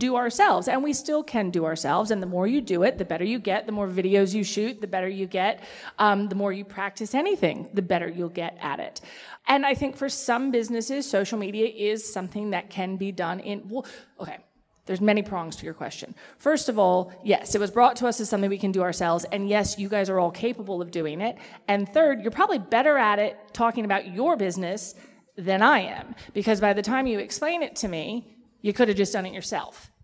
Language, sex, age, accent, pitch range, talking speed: English, female, 30-49, American, 190-250 Hz, 230 wpm